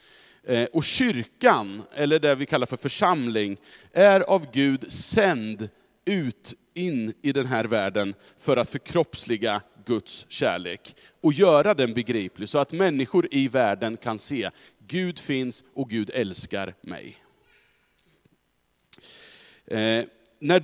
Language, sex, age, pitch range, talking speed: Swedish, male, 40-59, 110-160 Hz, 120 wpm